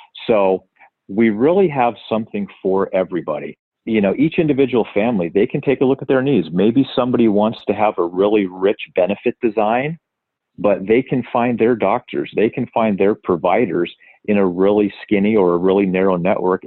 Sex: male